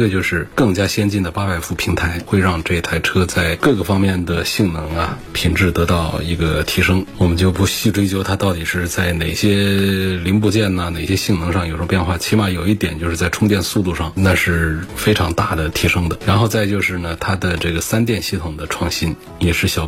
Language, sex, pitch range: Chinese, male, 85-105 Hz